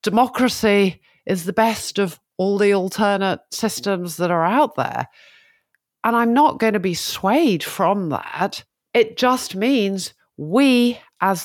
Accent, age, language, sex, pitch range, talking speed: British, 50-69, English, female, 155-205 Hz, 140 wpm